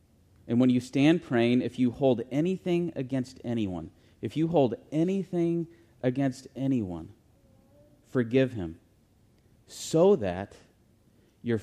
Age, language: 30-49, English